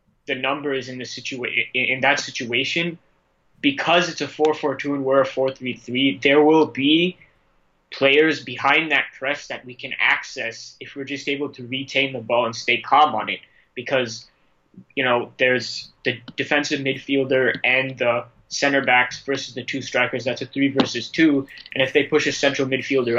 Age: 20-39